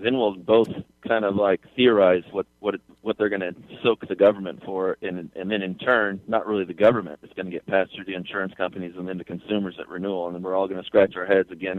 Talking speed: 260 wpm